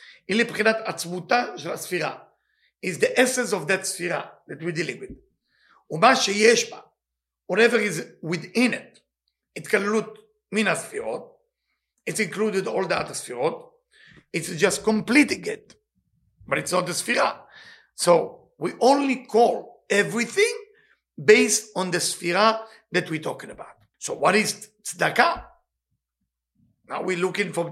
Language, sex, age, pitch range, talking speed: English, male, 50-69, 175-250 Hz, 115 wpm